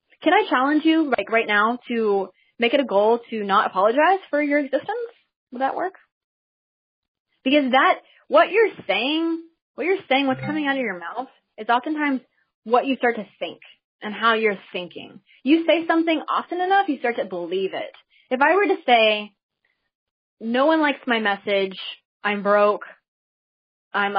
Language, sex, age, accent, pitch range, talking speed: English, female, 20-39, American, 210-295 Hz, 170 wpm